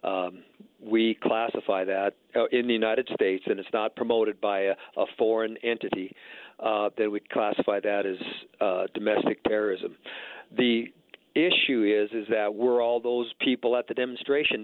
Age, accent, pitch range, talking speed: 50-69, American, 105-120 Hz, 160 wpm